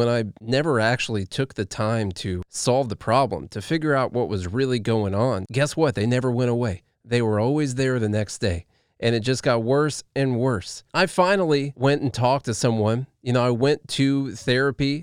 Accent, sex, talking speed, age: American, male, 210 wpm, 30-49